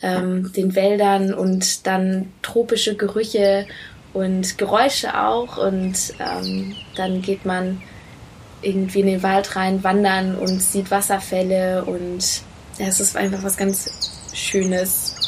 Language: German